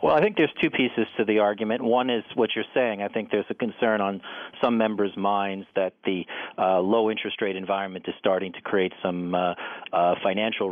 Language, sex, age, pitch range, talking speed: English, male, 40-59, 90-110 Hz, 215 wpm